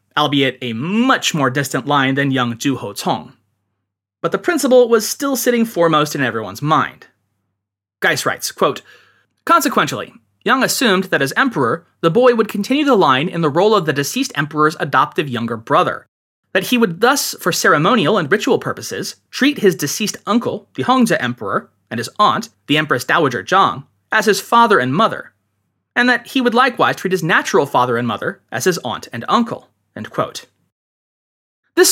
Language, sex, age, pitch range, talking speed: English, male, 30-49, 135-220 Hz, 165 wpm